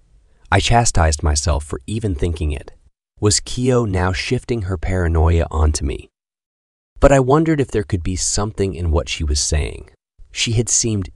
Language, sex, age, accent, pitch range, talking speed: English, male, 30-49, American, 80-100 Hz, 165 wpm